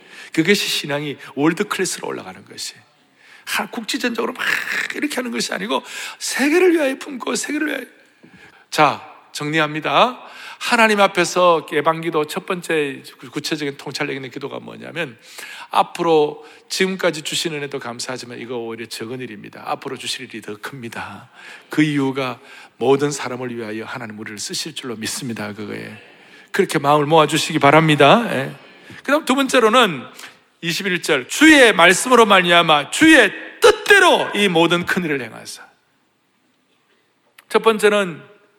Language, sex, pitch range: Korean, male, 145-225 Hz